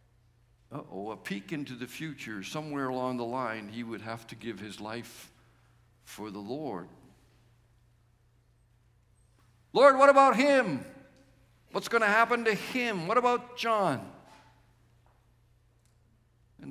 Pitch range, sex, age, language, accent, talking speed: 115-170 Hz, male, 60-79, English, American, 125 wpm